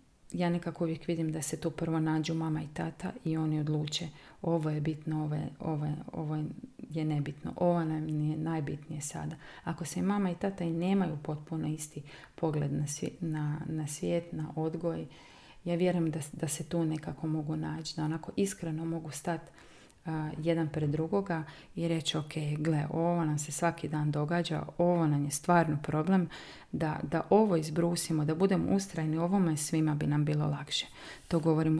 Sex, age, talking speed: female, 30-49, 180 wpm